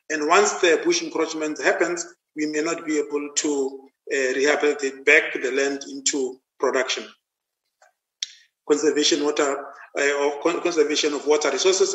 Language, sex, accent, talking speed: English, male, Nigerian, 135 wpm